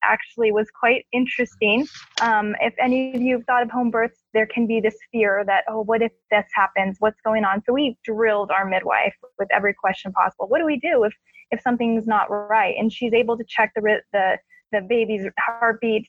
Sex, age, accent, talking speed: female, 10-29, American, 210 wpm